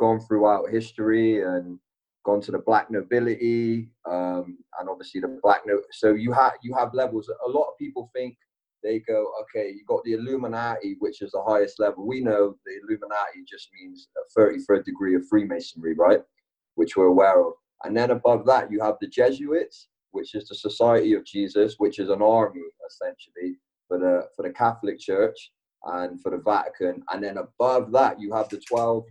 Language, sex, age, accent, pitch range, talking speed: English, male, 30-49, British, 100-135 Hz, 190 wpm